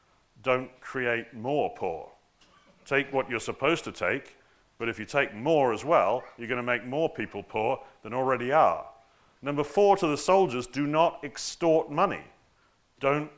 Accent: British